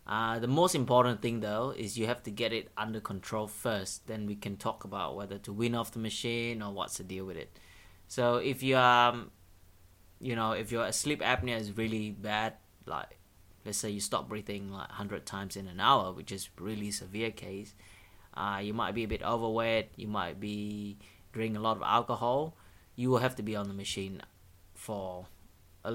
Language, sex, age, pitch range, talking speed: English, male, 20-39, 100-115 Hz, 205 wpm